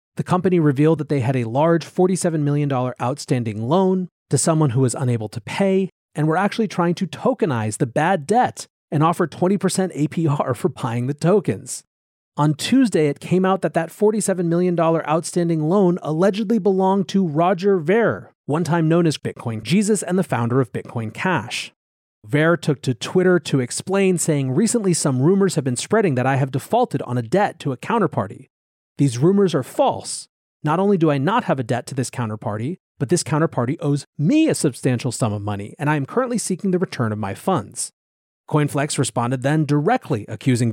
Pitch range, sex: 130-185 Hz, male